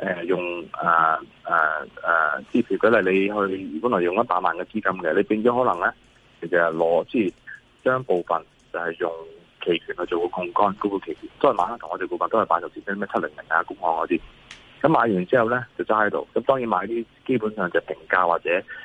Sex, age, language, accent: male, 20-39, Chinese, native